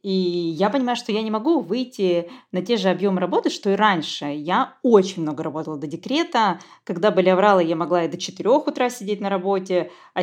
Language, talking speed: Russian, 205 wpm